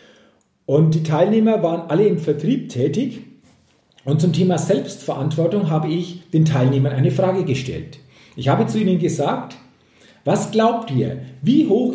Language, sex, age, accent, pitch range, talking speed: German, male, 40-59, German, 140-195 Hz, 145 wpm